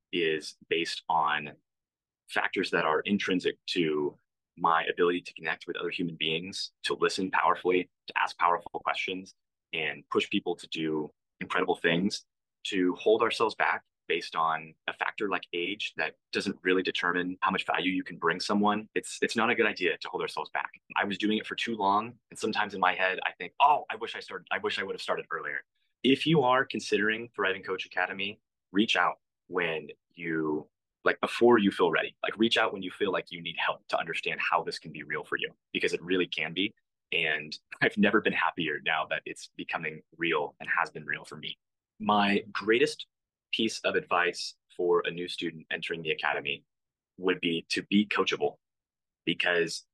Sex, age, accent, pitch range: male, 20-39, American, 85-110 Hz